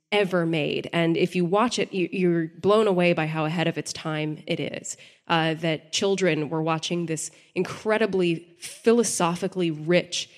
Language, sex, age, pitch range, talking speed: English, female, 20-39, 170-220 Hz, 155 wpm